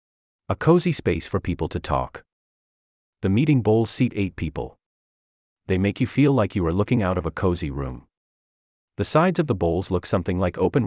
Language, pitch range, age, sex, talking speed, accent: English, 75-120 Hz, 30-49, male, 195 wpm, American